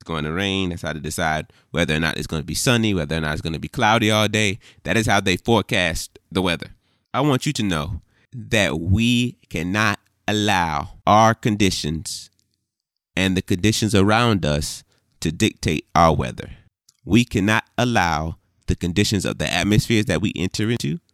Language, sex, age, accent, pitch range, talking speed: English, male, 30-49, American, 85-110 Hz, 180 wpm